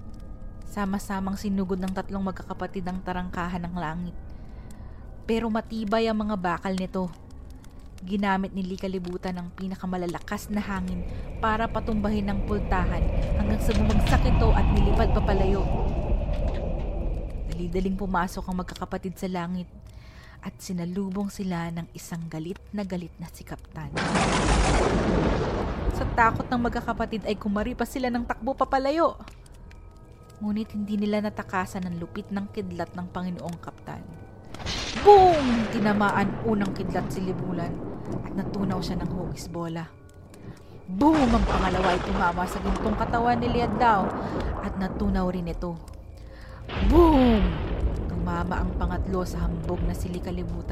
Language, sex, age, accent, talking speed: Filipino, female, 20-39, native, 125 wpm